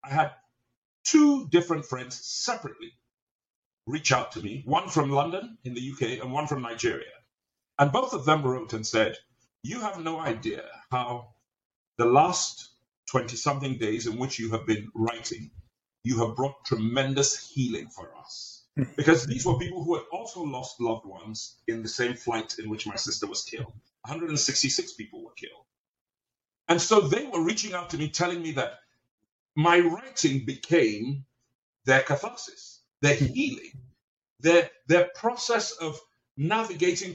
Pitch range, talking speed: 125-170 Hz, 155 wpm